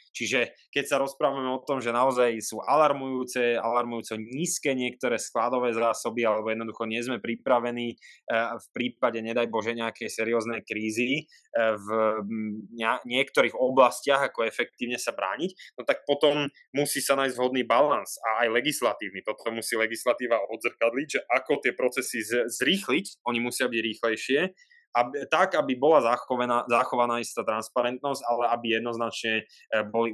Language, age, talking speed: Slovak, 20-39, 135 wpm